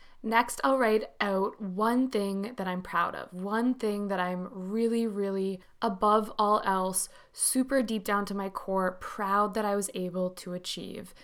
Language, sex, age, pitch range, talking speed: English, female, 20-39, 185-220 Hz, 170 wpm